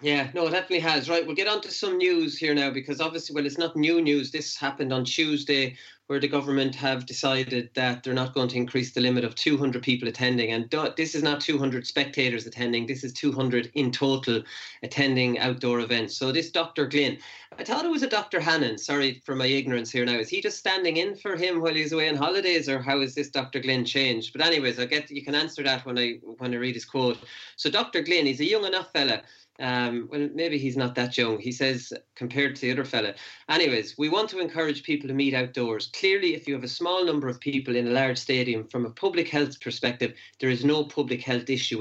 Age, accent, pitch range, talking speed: 30-49, Irish, 125-155 Hz, 235 wpm